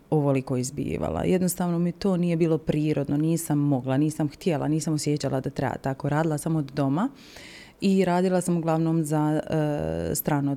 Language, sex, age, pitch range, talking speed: Croatian, female, 30-49, 150-195 Hz, 160 wpm